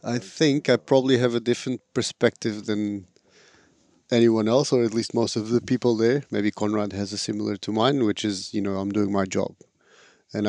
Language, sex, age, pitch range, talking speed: English, male, 30-49, 105-120 Hz, 200 wpm